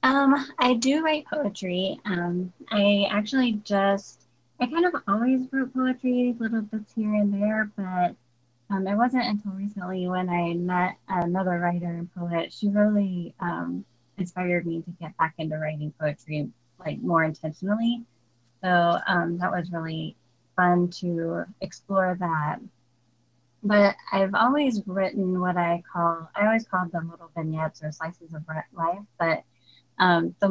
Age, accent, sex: 20-39, American, female